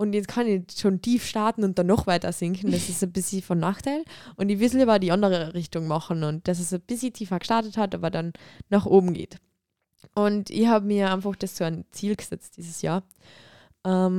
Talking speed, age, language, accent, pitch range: 215 wpm, 20-39, German, German, 175-205 Hz